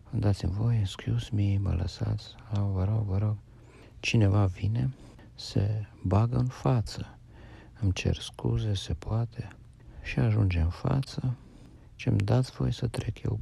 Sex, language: male, Romanian